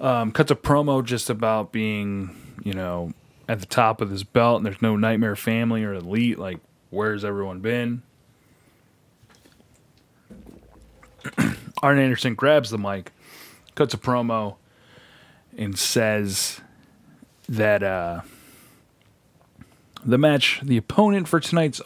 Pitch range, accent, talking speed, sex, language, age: 100-125 Hz, American, 120 wpm, male, English, 30-49